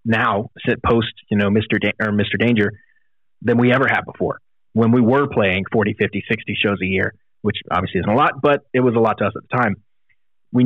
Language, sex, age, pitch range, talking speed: English, male, 30-49, 105-125 Hz, 230 wpm